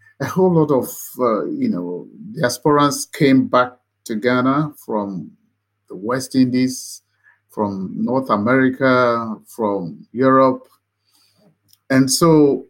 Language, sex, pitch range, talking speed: English, male, 110-155 Hz, 110 wpm